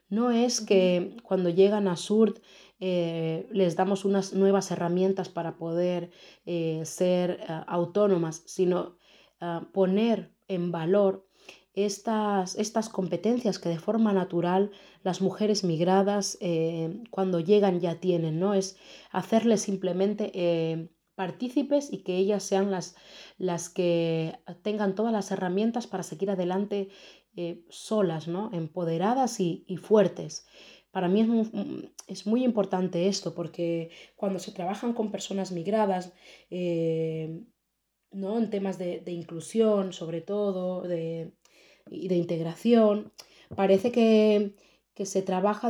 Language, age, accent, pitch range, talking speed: Spanish, 30-49, Spanish, 175-205 Hz, 125 wpm